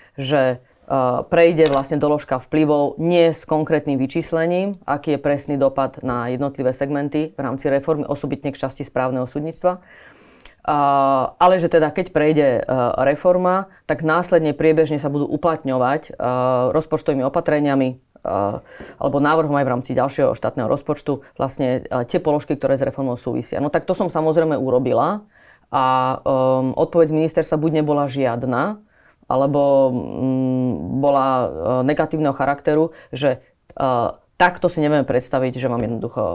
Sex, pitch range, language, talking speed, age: female, 135-160 Hz, Slovak, 145 wpm, 30-49